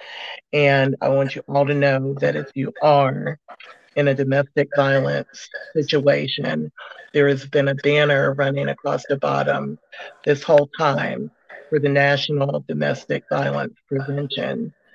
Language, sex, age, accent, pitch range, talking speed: English, male, 50-69, American, 140-150 Hz, 135 wpm